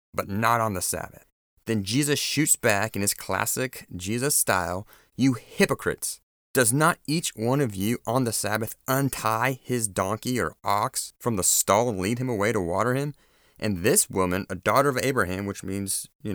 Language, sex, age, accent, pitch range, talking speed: English, male, 30-49, American, 95-130 Hz, 185 wpm